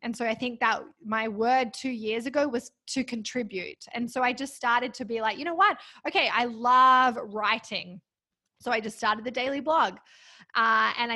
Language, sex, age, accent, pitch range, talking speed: English, female, 20-39, Australian, 215-260 Hz, 200 wpm